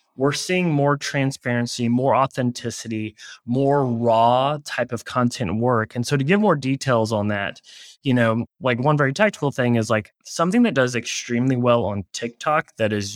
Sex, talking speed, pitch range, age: male, 175 wpm, 115-145 Hz, 20-39